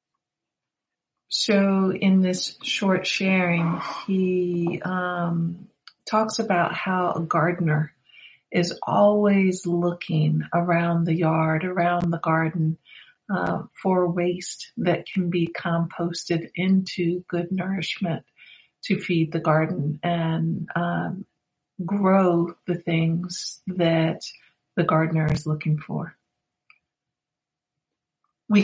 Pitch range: 165-200 Hz